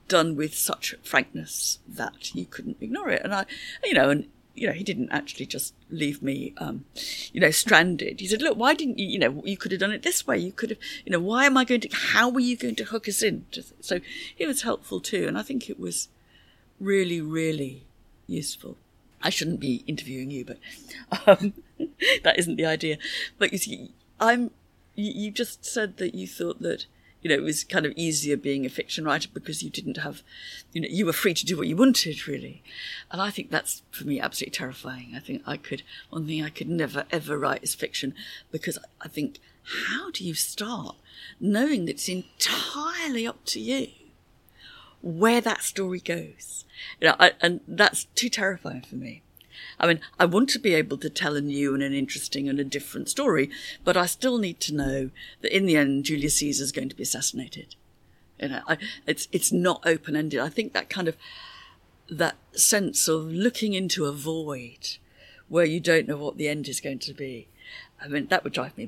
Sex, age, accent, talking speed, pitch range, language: female, 50-69, British, 205 wpm, 145-225 Hz, English